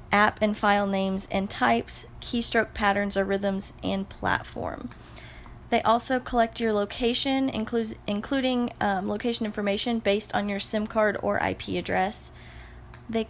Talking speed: 135 wpm